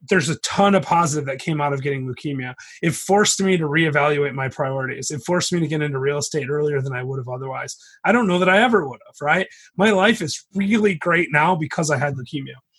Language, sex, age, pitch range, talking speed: English, male, 30-49, 145-185 Hz, 240 wpm